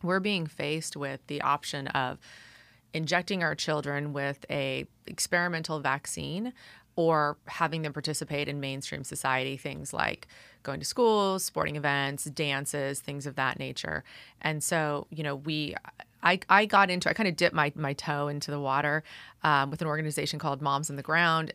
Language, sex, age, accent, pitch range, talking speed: English, female, 30-49, American, 140-165 Hz, 170 wpm